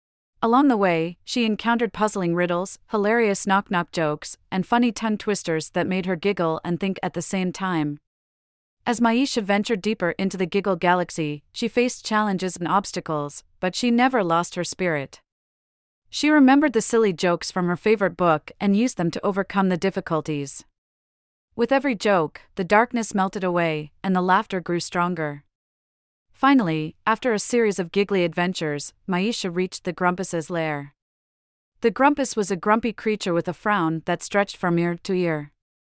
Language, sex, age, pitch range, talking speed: English, female, 30-49, 165-215 Hz, 165 wpm